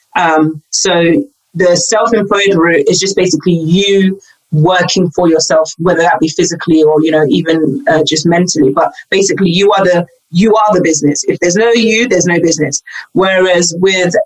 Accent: British